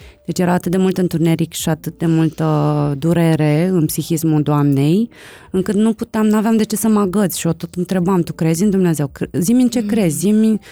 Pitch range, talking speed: 160-195 Hz, 200 wpm